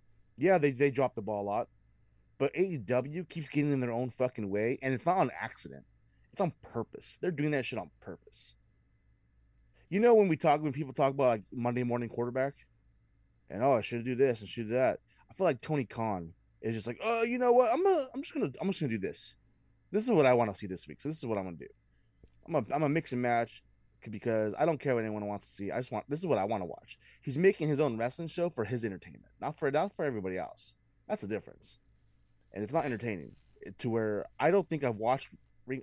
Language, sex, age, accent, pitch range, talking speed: English, male, 30-49, American, 110-145 Hz, 250 wpm